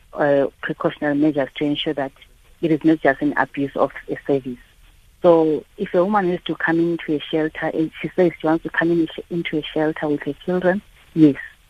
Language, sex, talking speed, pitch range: English, female, 215 wpm, 140-160 Hz